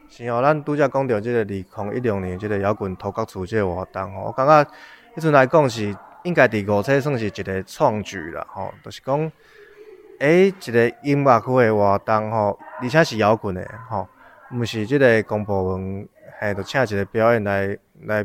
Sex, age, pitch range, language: male, 20-39, 100-125 Hz, Chinese